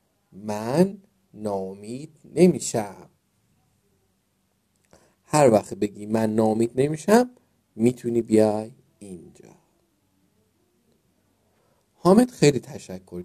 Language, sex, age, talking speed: Persian, male, 50-69, 70 wpm